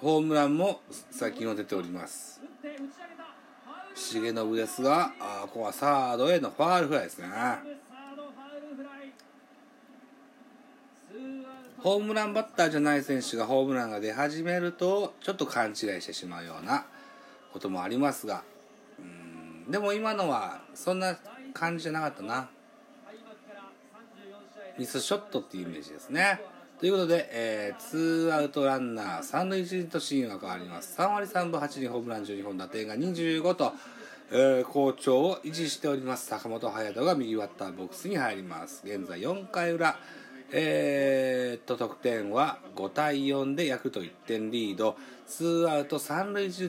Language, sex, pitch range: Japanese, male, 125-205 Hz